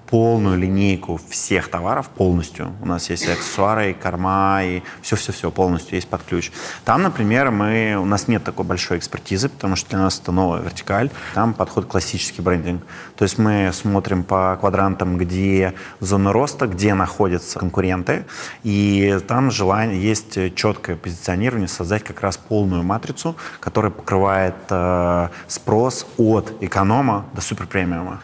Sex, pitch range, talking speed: male, 90-110 Hz, 145 wpm